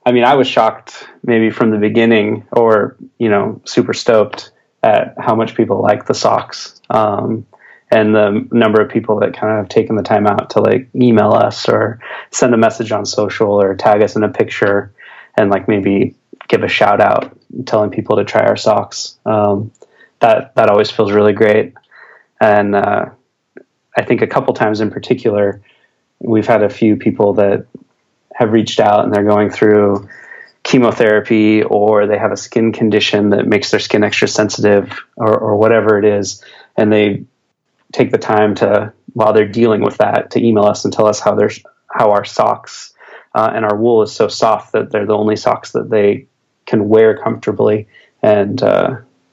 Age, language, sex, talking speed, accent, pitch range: 20-39, English, male, 185 wpm, American, 105-110 Hz